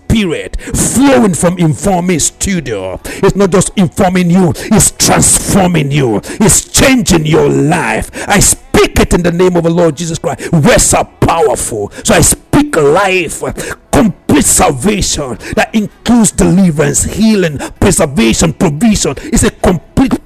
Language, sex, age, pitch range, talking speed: English, male, 60-79, 160-200 Hz, 135 wpm